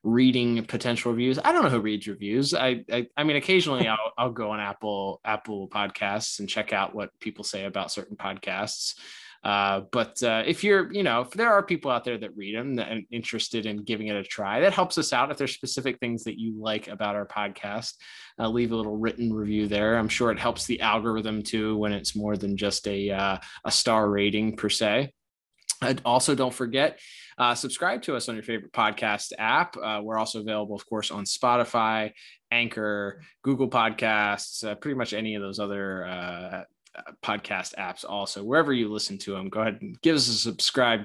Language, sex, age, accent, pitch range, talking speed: English, male, 20-39, American, 105-135 Hz, 205 wpm